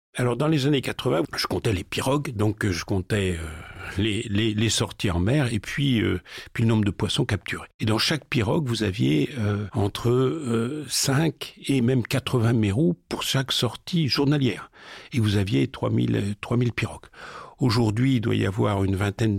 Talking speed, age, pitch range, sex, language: 185 wpm, 50-69, 100-125 Hz, male, French